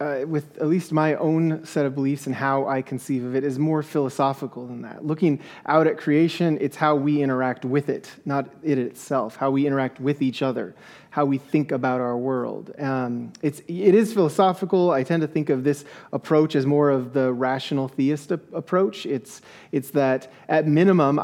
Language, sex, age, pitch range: English, male, 30-49, 130-155 Hz